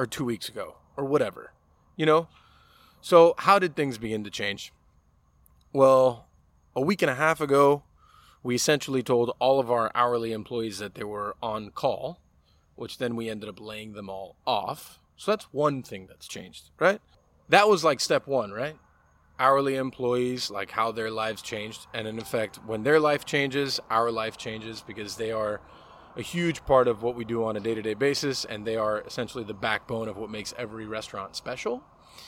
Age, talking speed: 20-39, 185 wpm